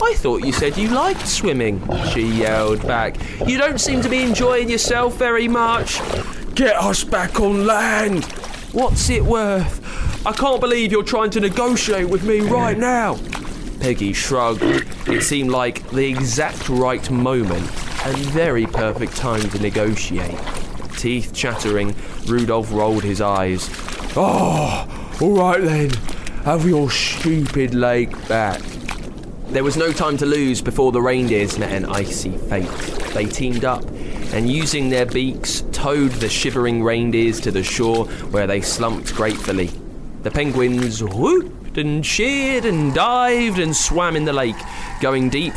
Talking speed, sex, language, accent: 150 wpm, male, English, British